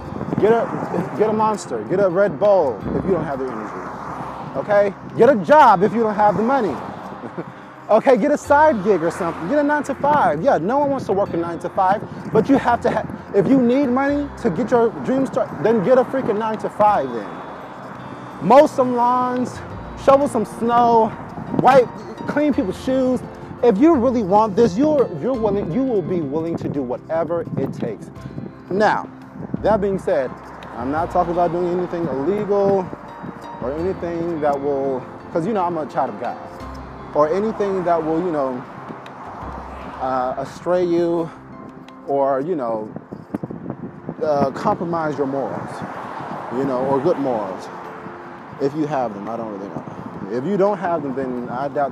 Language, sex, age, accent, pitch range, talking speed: English, male, 30-49, American, 150-235 Hz, 180 wpm